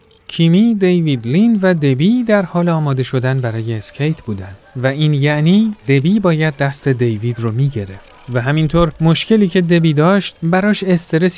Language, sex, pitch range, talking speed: Persian, male, 135-185 Hz, 160 wpm